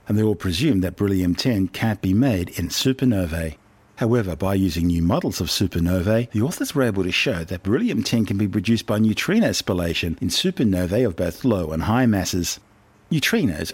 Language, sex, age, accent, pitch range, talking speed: English, male, 50-69, Australian, 90-115 Hz, 180 wpm